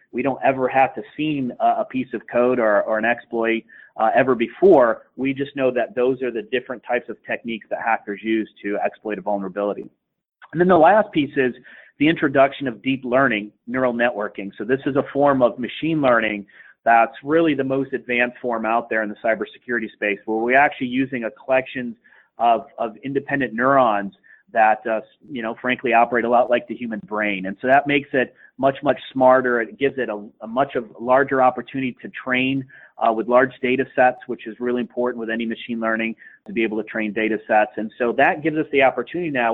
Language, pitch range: English, 110-135 Hz